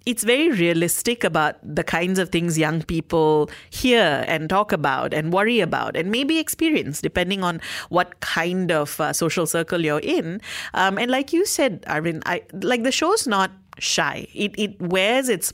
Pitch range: 155-190 Hz